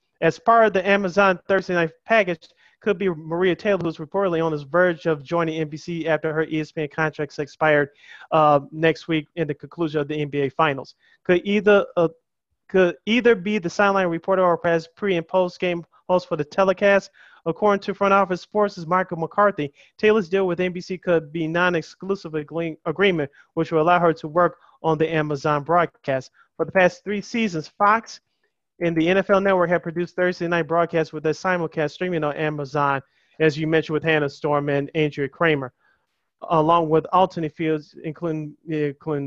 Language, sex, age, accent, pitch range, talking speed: English, male, 30-49, American, 155-190 Hz, 175 wpm